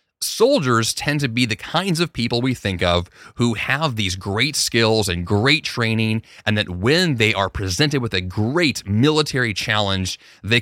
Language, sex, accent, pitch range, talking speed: English, male, American, 100-135 Hz, 175 wpm